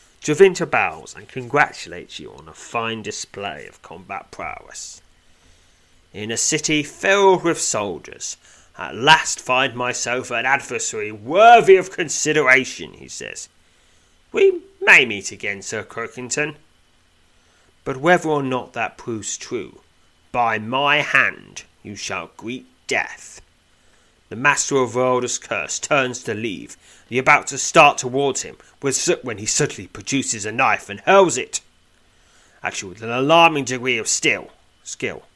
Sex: male